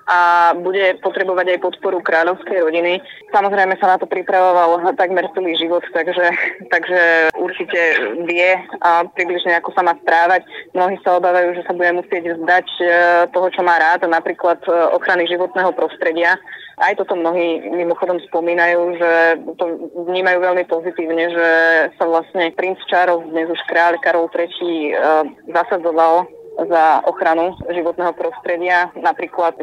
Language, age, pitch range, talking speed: Slovak, 20-39, 165-180 Hz, 135 wpm